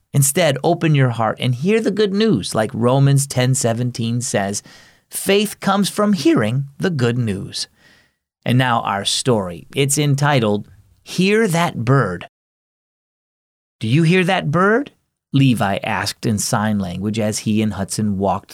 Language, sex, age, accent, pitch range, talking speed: English, male, 30-49, American, 110-165 Hz, 140 wpm